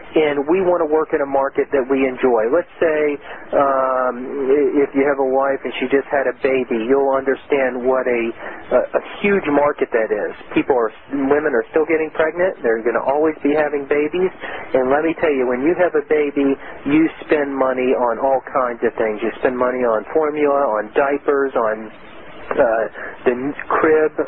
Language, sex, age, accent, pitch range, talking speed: English, male, 40-59, American, 135-165 Hz, 195 wpm